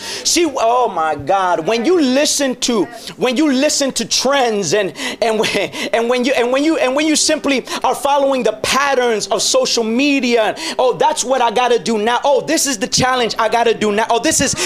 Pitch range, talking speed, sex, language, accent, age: 250-300 Hz, 215 wpm, male, English, American, 30-49